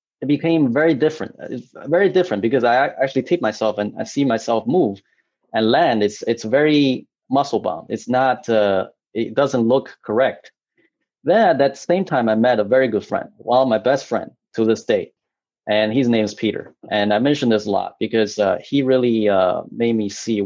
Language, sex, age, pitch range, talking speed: English, male, 30-49, 110-140 Hz, 200 wpm